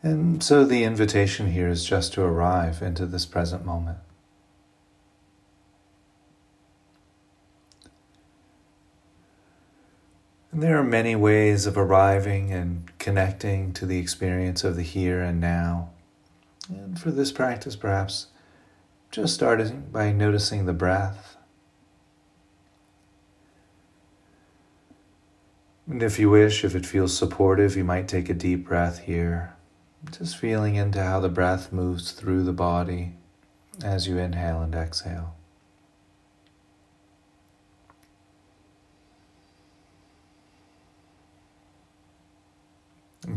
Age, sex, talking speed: 30-49, male, 100 wpm